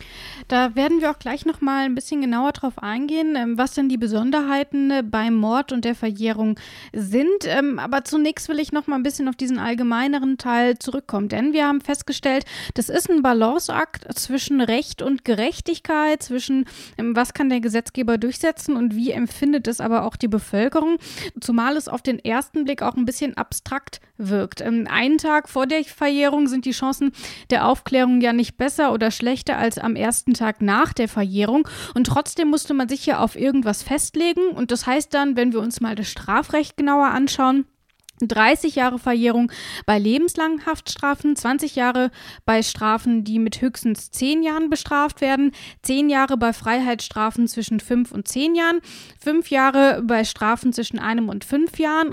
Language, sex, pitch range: German, female, 235-285 Hz